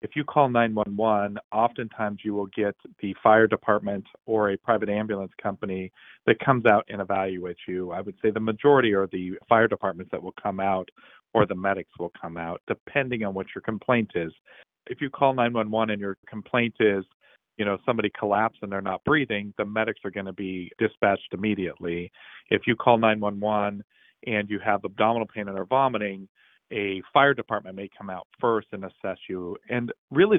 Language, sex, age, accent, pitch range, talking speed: English, male, 40-59, American, 95-110 Hz, 190 wpm